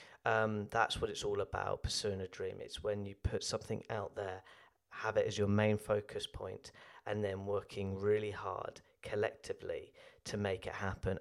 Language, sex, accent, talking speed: English, male, British, 175 wpm